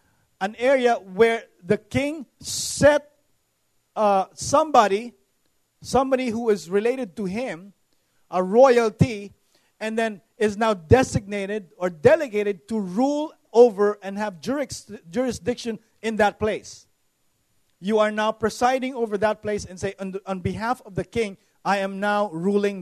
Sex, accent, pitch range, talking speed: male, Filipino, 200-240 Hz, 130 wpm